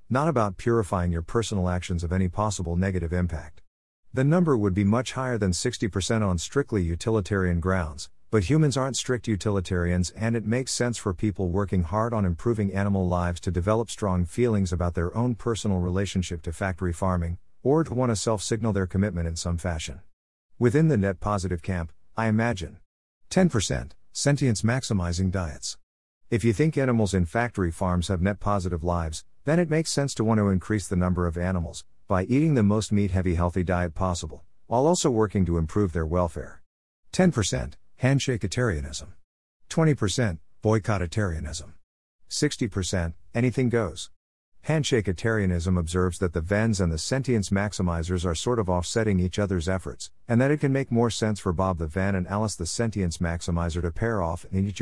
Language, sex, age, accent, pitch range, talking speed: English, male, 50-69, American, 85-115 Hz, 170 wpm